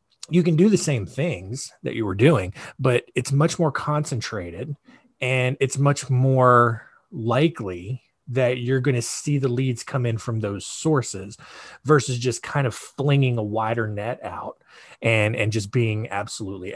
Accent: American